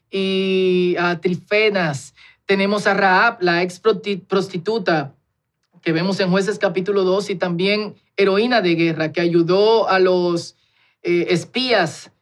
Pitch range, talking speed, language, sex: 170-205 Hz, 130 wpm, Spanish, male